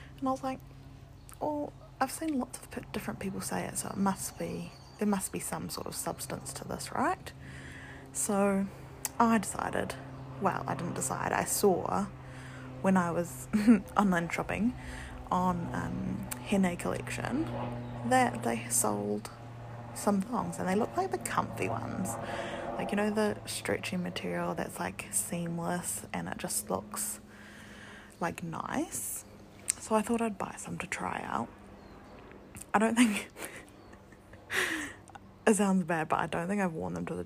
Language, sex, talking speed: English, female, 155 wpm